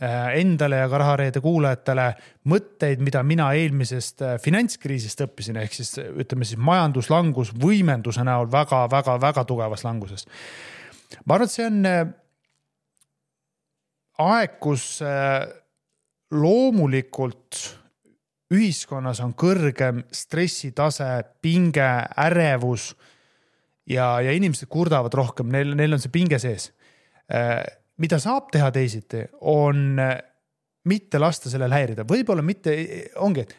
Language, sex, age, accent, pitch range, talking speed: English, male, 30-49, Finnish, 130-170 Hz, 105 wpm